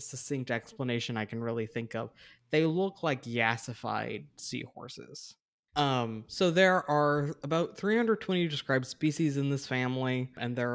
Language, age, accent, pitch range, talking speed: English, 20-39, American, 120-155 Hz, 140 wpm